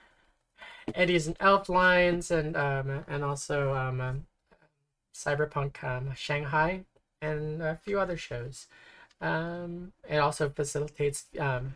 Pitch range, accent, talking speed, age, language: 140-175 Hz, American, 115 wpm, 20-39, English